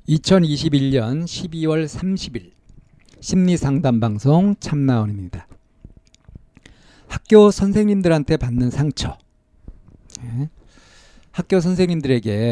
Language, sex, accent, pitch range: Korean, male, native, 120-175 Hz